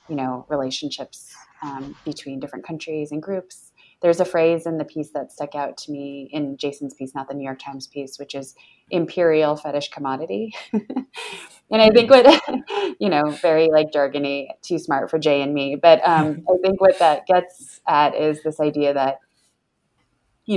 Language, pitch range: English, 140-170 Hz